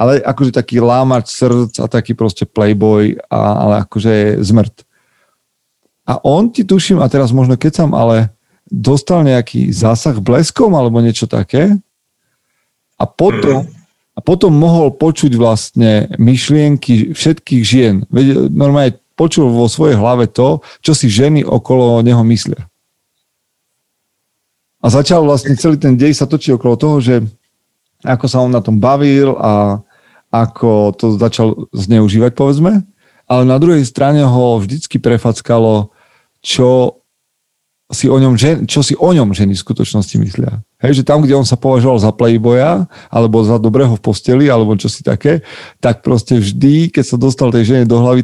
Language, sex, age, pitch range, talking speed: Slovak, male, 40-59, 115-140 Hz, 150 wpm